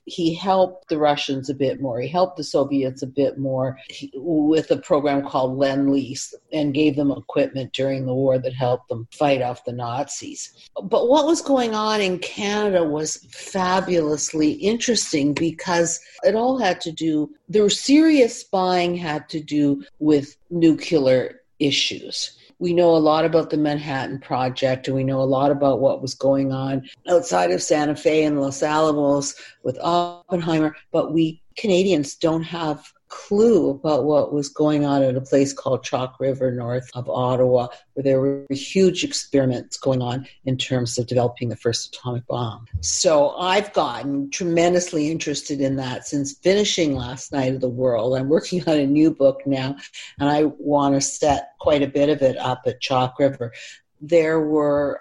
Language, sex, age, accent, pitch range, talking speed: English, female, 50-69, American, 135-165 Hz, 175 wpm